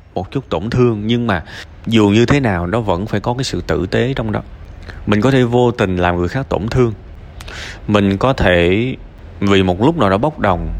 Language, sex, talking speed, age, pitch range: Vietnamese, male, 220 wpm, 20-39, 90-115 Hz